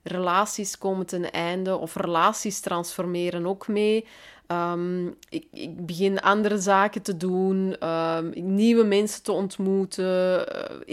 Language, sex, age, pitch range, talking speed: Dutch, female, 20-39, 180-230 Hz, 115 wpm